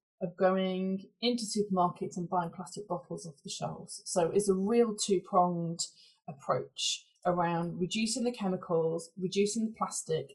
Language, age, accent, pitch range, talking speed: English, 20-39, British, 180-225 Hz, 140 wpm